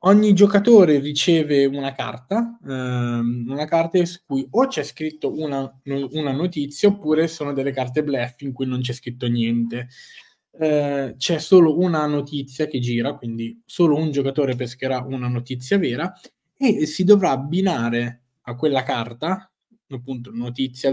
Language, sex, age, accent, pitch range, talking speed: Italian, male, 20-39, native, 130-175 Hz, 145 wpm